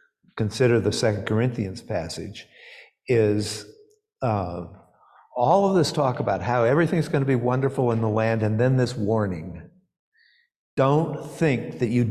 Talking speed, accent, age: 145 wpm, American, 50-69